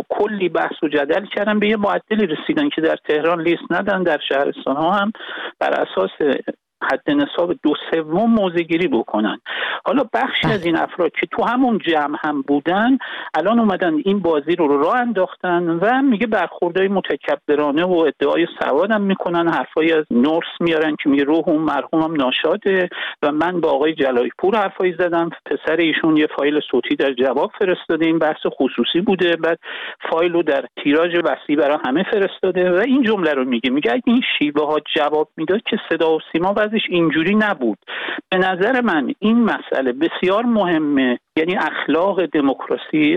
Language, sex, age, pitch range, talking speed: Persian, male, 50-69, 155-205 Hz, 165 wpm